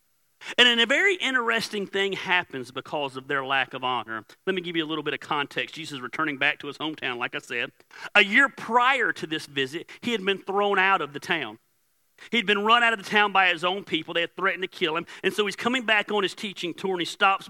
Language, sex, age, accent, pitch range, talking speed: English, male, 40-59, American, 160-200 Hz, 255 wpm